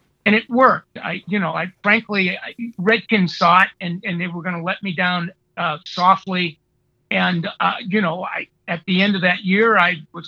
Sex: male